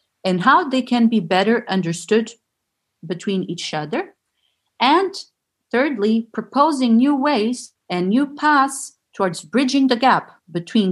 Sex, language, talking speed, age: female, English, 125 wpm, 40-59